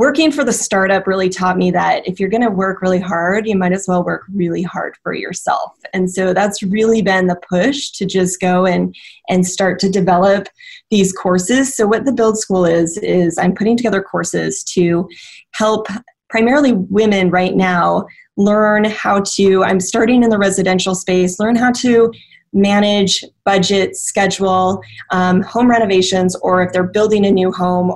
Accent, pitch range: American, 185-215 Hz